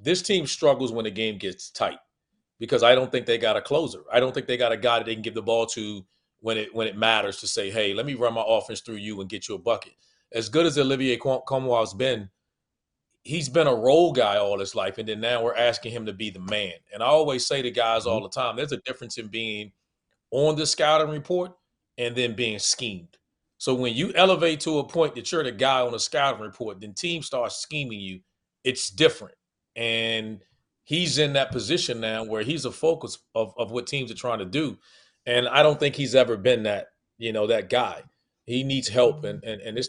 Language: English